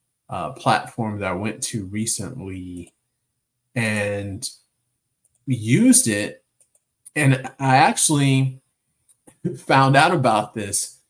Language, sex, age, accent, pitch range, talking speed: English, male, 30-49, American, 120-135 Hz, 90 wpm